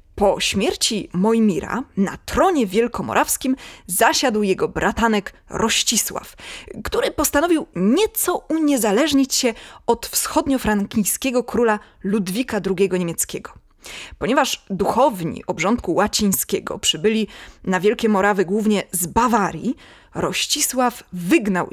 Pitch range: 195-275 Hz